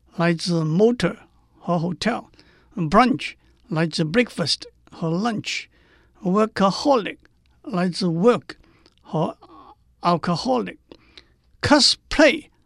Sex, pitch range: male, 170-245 Hz